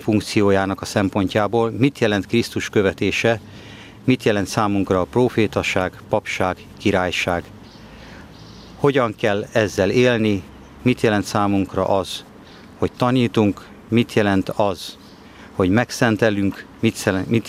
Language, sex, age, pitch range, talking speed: Hungarian, male, 50-69, 95-115 Hz, 105 wpm